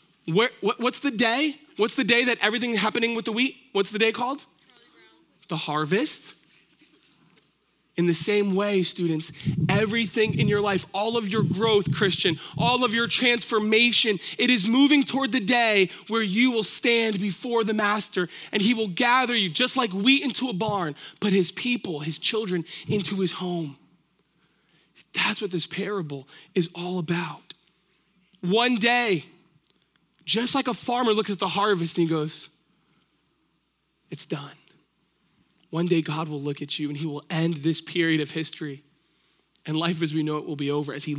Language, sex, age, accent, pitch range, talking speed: English, male, 20-39, American, 160-225 Hz, 170 wpm